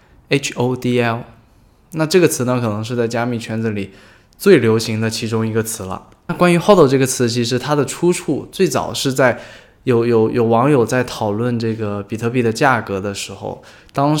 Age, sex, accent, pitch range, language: 20-39, male, native, 110-135 Hz, Chinese